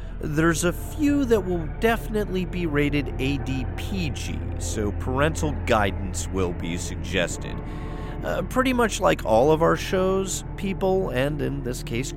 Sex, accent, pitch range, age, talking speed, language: male, American, 95-155 Hz, 40-59, 140 wpm, English